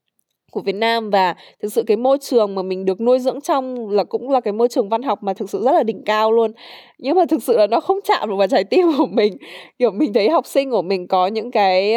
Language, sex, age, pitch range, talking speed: Vietnamese, female, 10-29, 195-285 Hz, 270 wpm